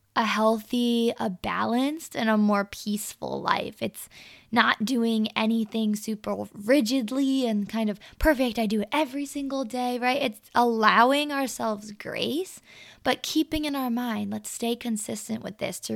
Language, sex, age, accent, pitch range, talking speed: English, female, 20-39, American, 215-270 Hz, 155 wpm